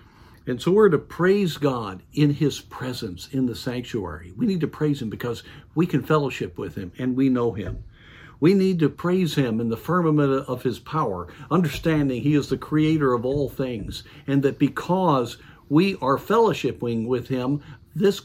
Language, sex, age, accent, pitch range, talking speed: English, male, 50-69, American, 115-150 Hz, 180 wpm